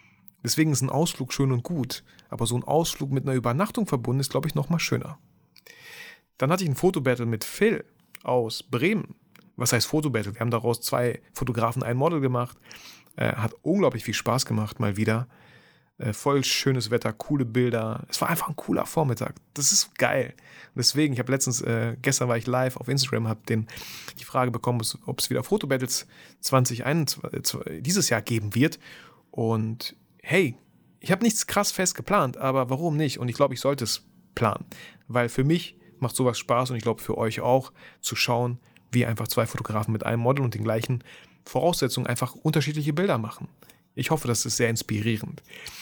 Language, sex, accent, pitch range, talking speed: German, male, German, 120-145 Hz, 185 wpm